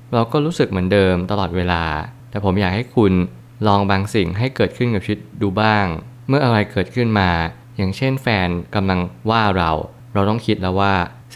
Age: 20-39